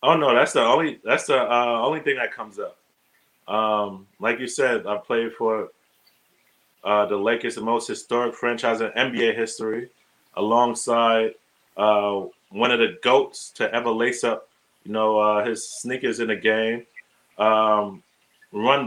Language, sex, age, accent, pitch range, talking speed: English, male, 20-39, American, 110-120 Hz, 160 wpm